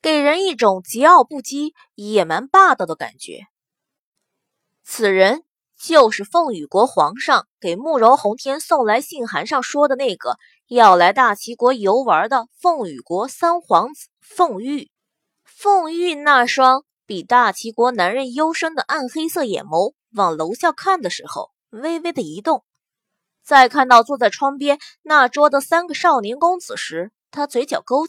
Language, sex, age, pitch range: Chinese, female, 20-39, 215-320 Hz